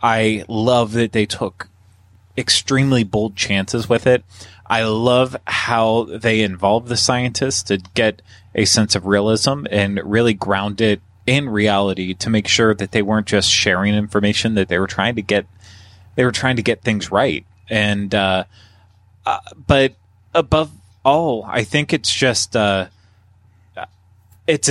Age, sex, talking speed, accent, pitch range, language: 20-39, male, 155 wpm, American, 100-125 Hz, English